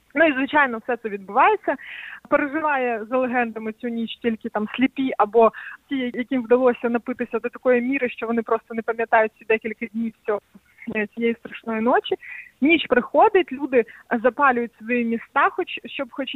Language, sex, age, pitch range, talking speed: Ukrainian, female, 20-39, 230-280 Hz, 160 wpm